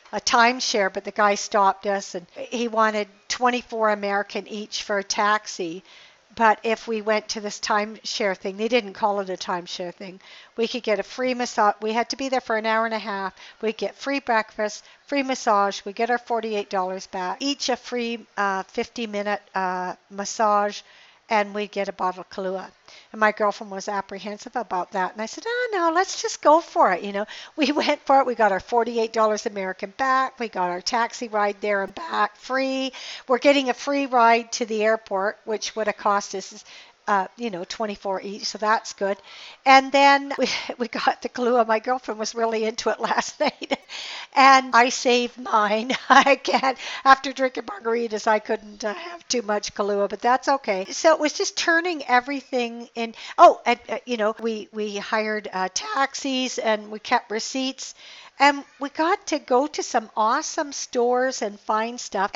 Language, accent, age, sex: English, American, 60-79, female